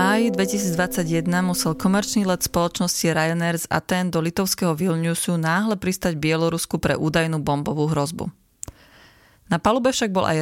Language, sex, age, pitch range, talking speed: Slovak, female, 30-49, 155-185 Hz, 140 wpm